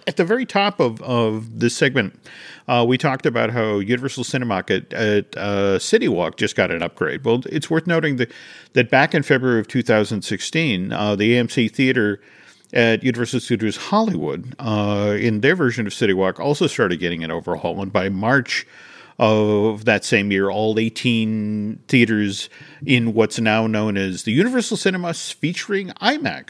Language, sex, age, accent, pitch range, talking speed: English, male, 50-69, American, 110-170 Hz, 165 wpm